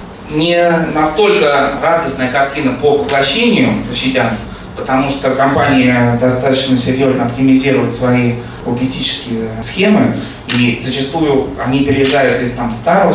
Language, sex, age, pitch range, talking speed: Russian, male, 20-39, 115-135 Hz, 95 wpm